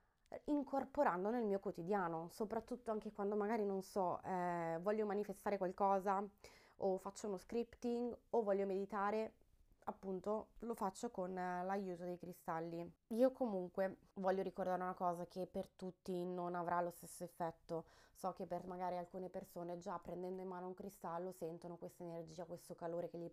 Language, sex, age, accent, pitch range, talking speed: Italian, female, 20-39, native, 170-205 Hz, 160 wpm